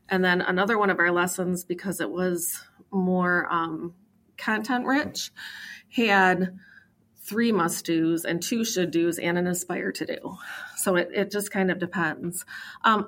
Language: English